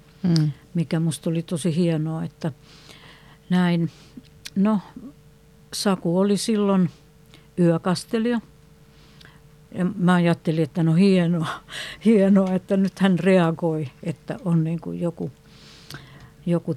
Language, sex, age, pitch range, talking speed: Finnish, female, 60-79, 150-185 Hz, 95 wpm